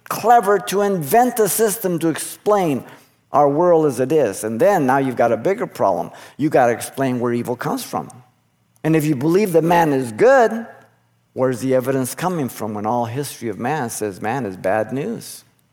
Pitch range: 115-150 Hz